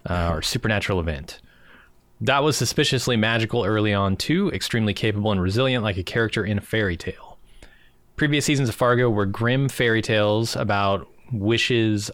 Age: 30-49